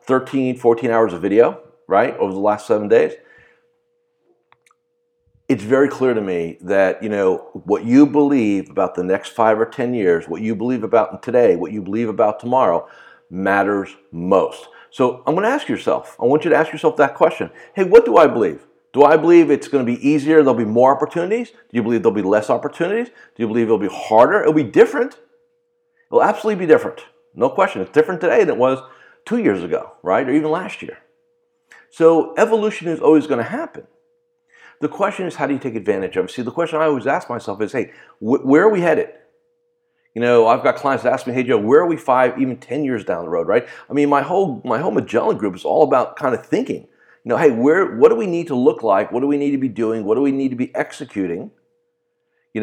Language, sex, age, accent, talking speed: English, male, 50-69, American, 225 wpm